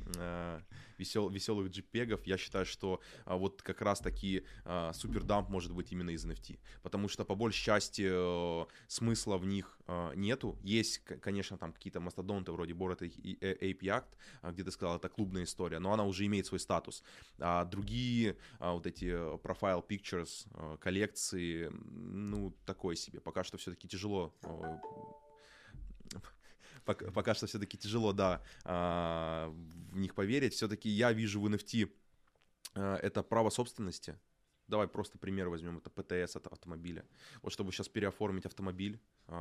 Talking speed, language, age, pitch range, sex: 135 wpm, Russian, 20-39, 90-105 Hz, male